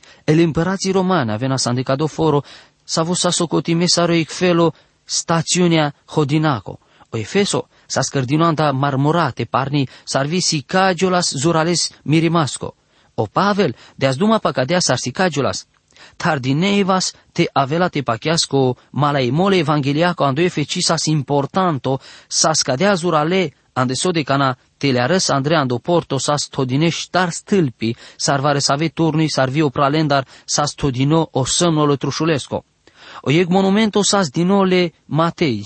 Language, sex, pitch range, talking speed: English, male, 135-175 Hz, 120 wpm